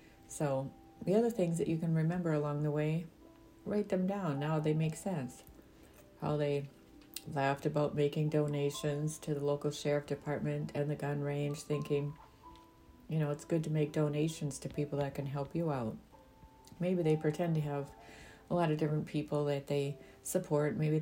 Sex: female